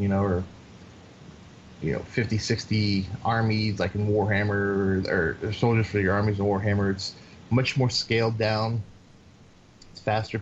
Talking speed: 150 wpm